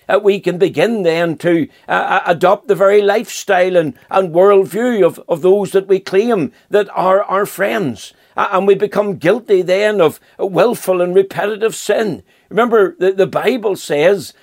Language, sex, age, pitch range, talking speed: English, male, 60-79, 190-210 Hz, 165 wpm